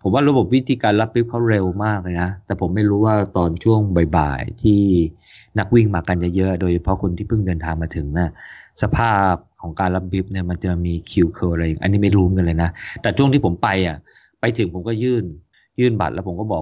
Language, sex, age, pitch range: Thai, male, 20-39, 90-115 Hz